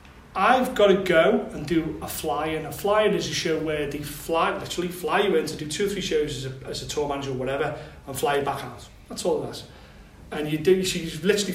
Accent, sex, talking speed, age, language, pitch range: British, male, 270 wpm, 30-49, English, 140-175 Hz